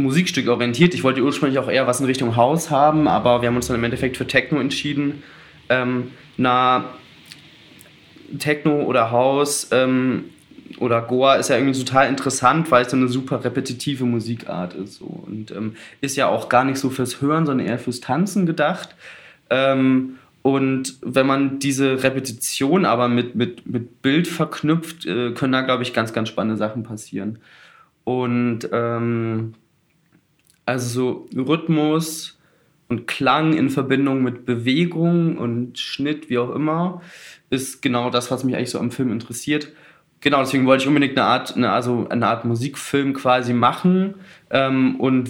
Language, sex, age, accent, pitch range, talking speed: German, male, 20-39, German, 120-140 Hz, 160 wpm